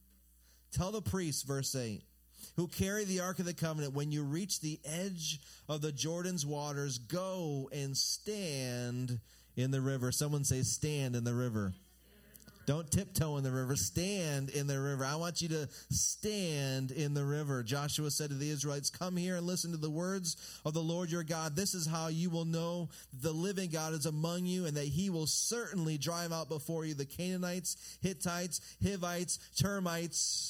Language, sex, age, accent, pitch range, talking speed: English, male, 30-49, American, 105-160 Hz, 185 wpm